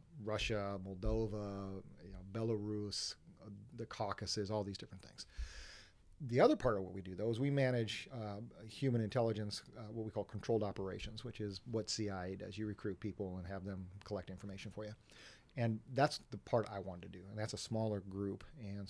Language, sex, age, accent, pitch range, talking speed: English, male, 40-59, American, 100-120 Hz, 185 wpm